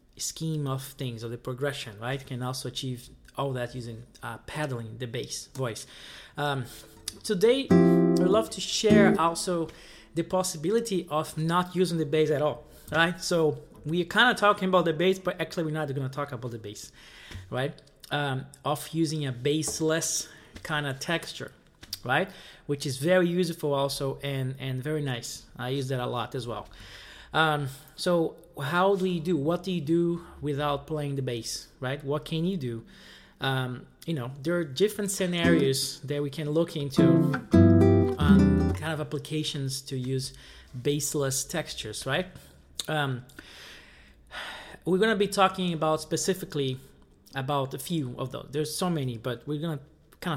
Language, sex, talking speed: English, male, 170 wpm